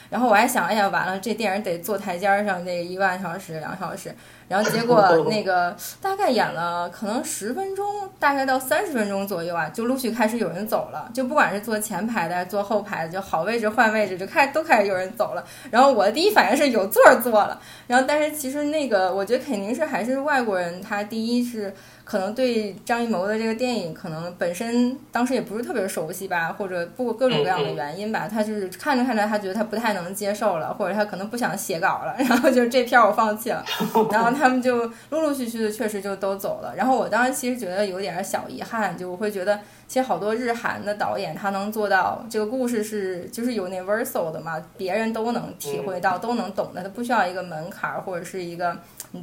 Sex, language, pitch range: female, Chinese, 190-240 Hz